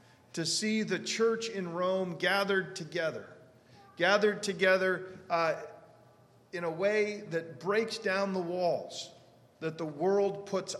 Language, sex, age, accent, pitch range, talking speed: English, male, 40-59, American, 175-210 Hz, 130 wpm